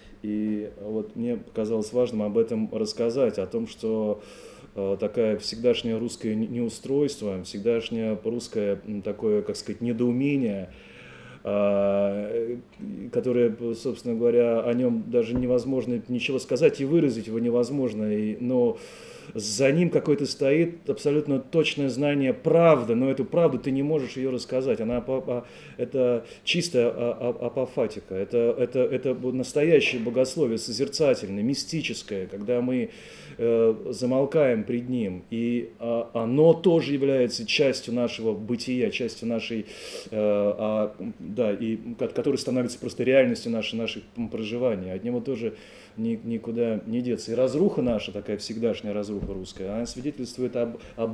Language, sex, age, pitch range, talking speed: Russian, male, 30-49, 105-130 Hz, 125 wpm